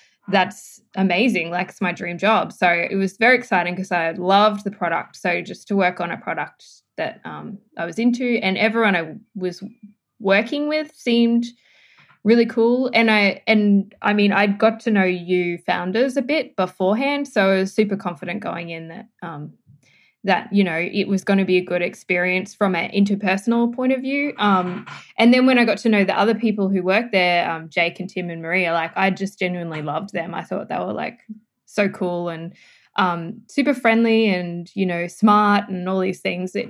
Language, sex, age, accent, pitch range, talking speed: English, female, 10-29, Australian, 180-225 Hz, 200 wpm